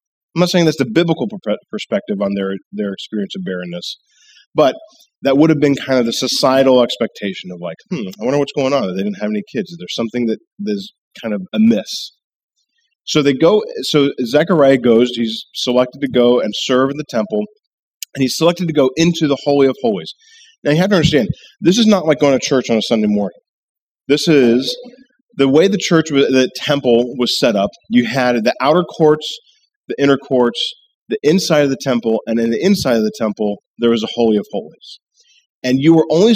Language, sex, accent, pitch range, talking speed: English, male, American, 120-200 Hz, 210 wpm